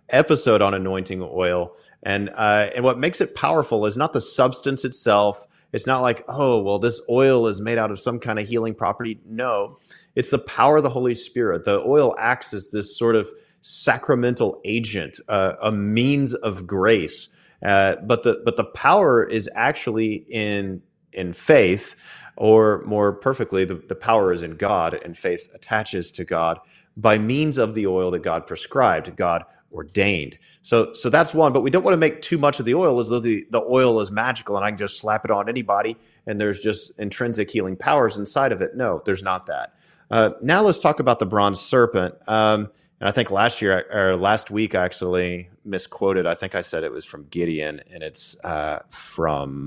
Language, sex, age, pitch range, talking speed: English, male, 30-49, 95-120 Hz, 195 wpm